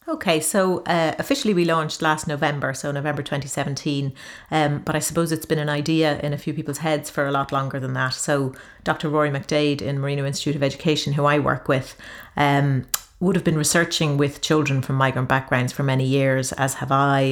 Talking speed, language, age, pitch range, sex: 205 wpm, English, 40-59, 140-155 Hz, female